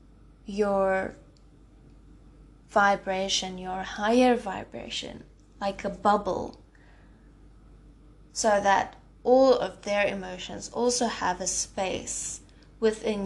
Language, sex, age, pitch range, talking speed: English, female, 20-39, 190-220 Hz, 85 wpm